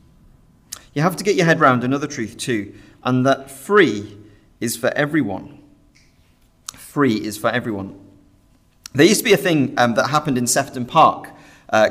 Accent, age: British, 40-59